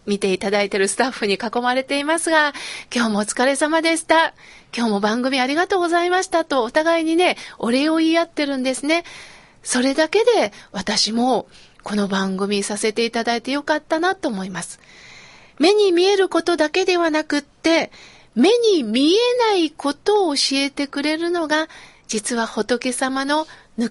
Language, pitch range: Japanese, 245-355 Hz